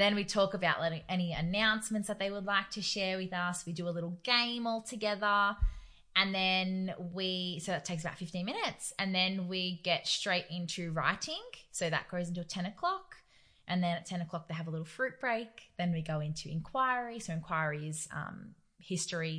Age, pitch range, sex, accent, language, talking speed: 20-39, 170-220 Hz, female, Australian, English, 200 wpm